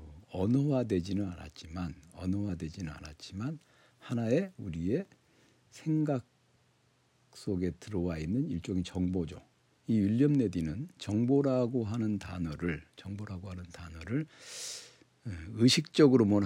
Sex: male